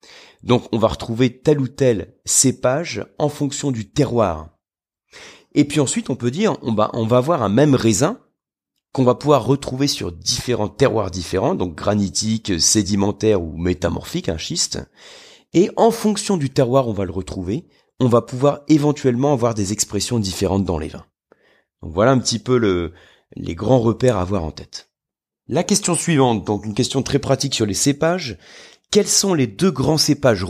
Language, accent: French, French